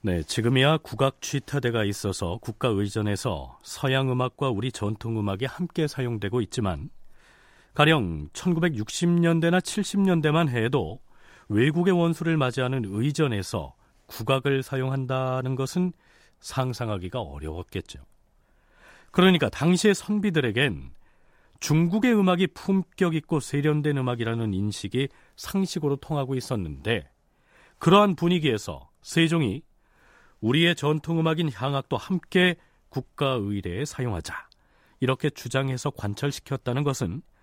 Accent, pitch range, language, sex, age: native, 110-160 Hz, Korean, male, 40-59